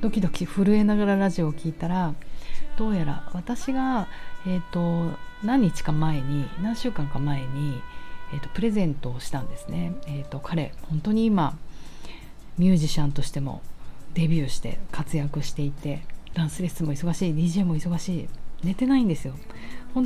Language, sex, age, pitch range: Japanese, female, 40-59, 145-195 Hz